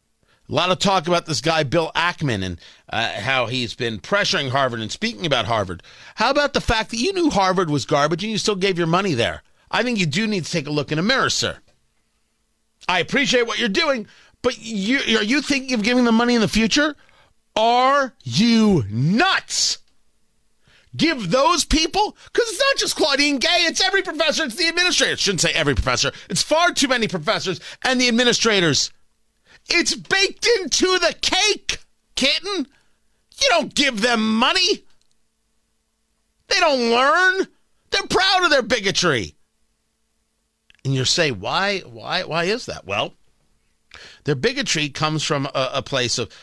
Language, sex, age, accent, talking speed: English, male, 40-59, American, 170 wpm